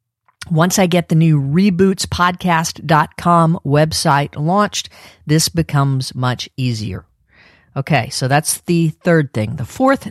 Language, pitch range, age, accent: English, 130-195 Hz, 50-69, American